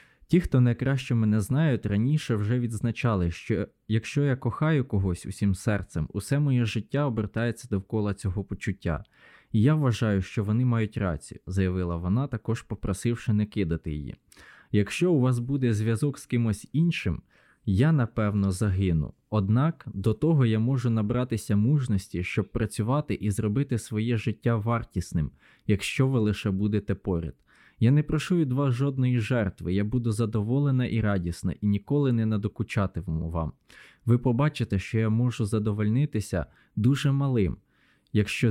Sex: male